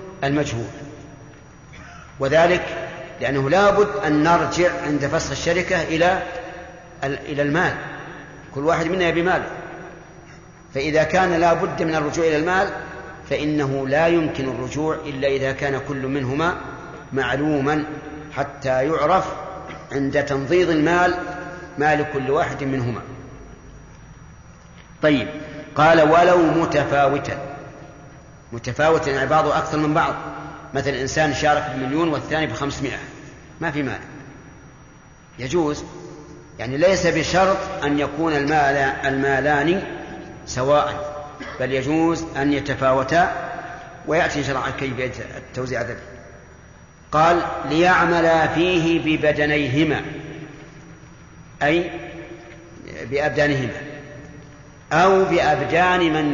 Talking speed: 95 wpm